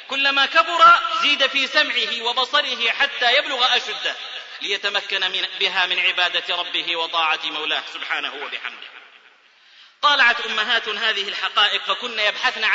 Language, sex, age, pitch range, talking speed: Arabic, male, 30-49, 190-265 Hz, 120 wpm